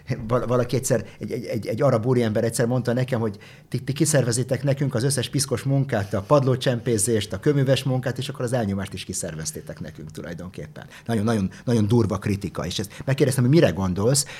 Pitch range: 100-135 Hz